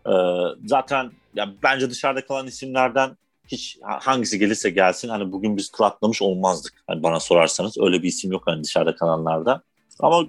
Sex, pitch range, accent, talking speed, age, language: male, 105-130 Hz, native, 165 wpm, 40-59, Turkish